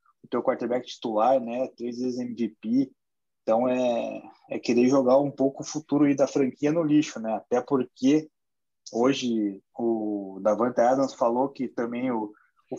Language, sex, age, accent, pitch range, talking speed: Portuguese, male, 20-39, Brazilian, 120-155 Hz, 150 wpm